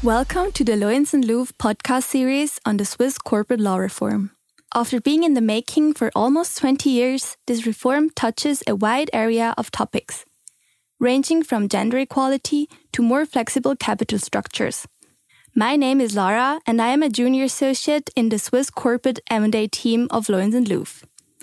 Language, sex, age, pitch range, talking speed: English, female, 10-29, 225-280 Hz, 165 wpm